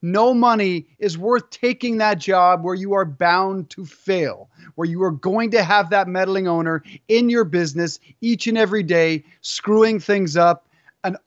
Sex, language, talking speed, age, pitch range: male, English, 175 wpm, 30-49, 160-210 Hz